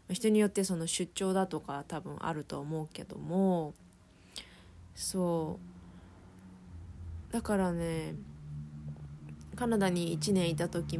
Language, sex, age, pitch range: Japanese, female, 20-39, 150-195 Hz